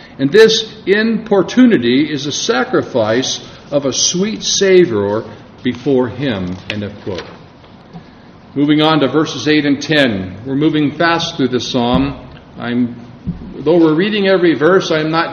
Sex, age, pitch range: male, 50-69, 125-170 Hz